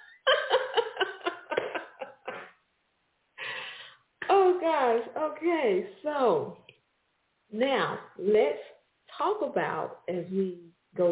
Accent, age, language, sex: American, 40-59, English, female